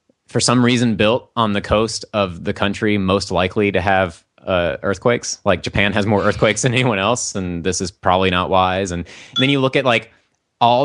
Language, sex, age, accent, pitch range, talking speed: English, male, 30-49, American, 95-120 Hz, 210 wpm